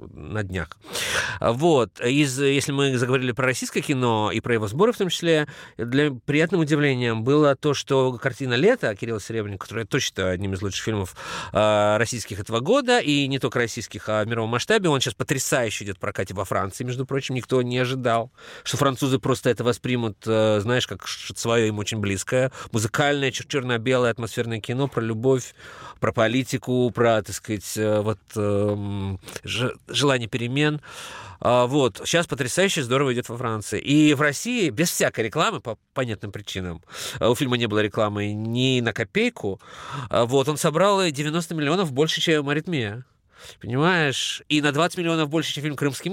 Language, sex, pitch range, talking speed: Russian, male, 110-145 Hz, 165 wpm